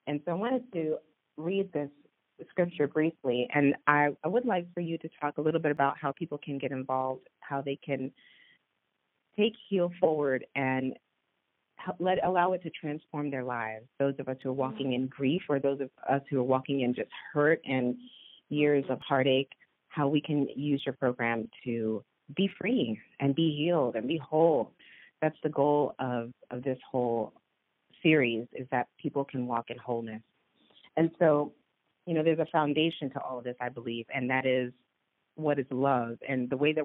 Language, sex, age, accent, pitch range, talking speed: English, female, 30-49, American, 130-160 Hz, 190 wpm